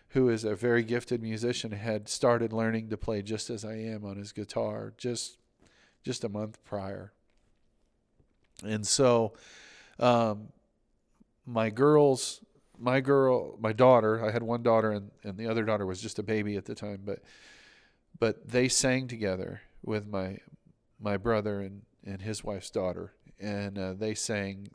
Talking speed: 160 wpm